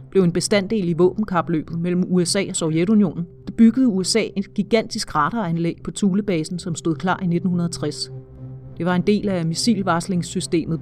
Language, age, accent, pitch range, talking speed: Danish, 40-59, native, 165-205 Hz, 155 wpm